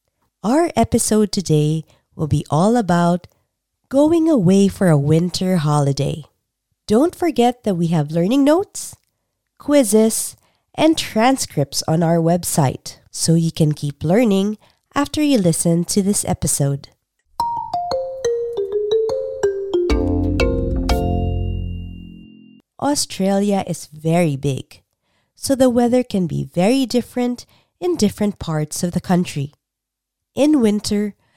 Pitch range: 150-245 Hz